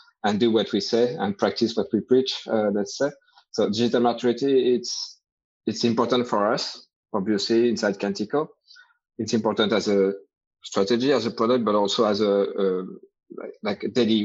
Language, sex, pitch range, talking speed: English, male, 100-120 Hz, 170 wpm